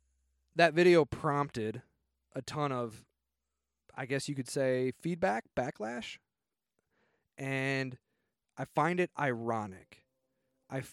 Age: 20-39